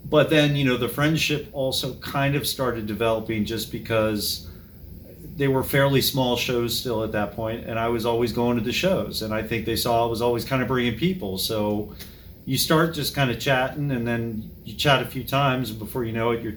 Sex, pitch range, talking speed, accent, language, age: male, 105-130 Hz, 225 wpm, American, English, 40-59